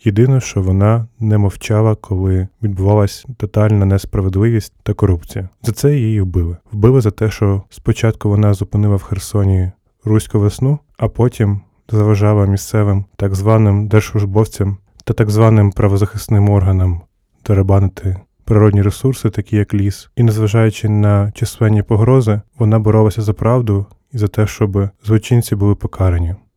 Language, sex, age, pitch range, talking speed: Ukrainian, male, 20-39, 100-115 Hz, 135 wpm